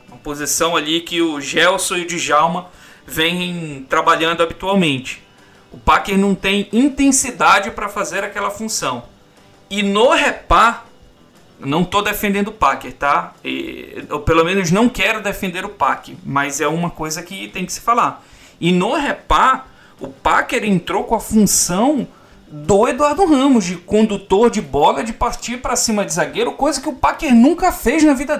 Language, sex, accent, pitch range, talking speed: Portuguese, male, Brazilian, 165-220 Hz, 160 wpm